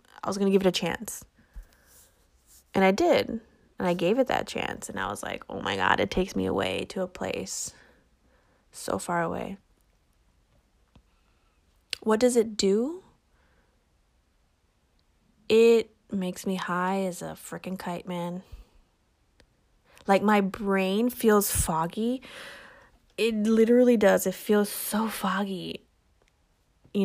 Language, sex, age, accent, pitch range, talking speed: English, female, 20-39, American, 180-210 Hz, 135 wpm